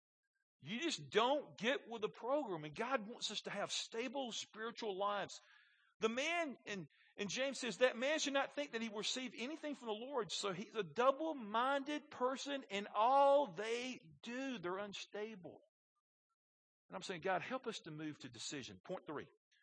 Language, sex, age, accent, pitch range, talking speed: English, male, 50-69, American, 155-240 Hz, 170 wpm